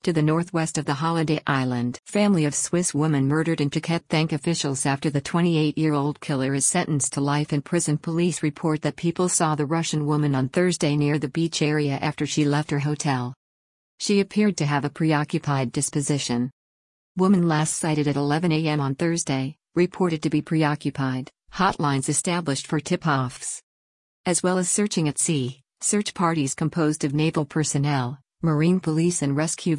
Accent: American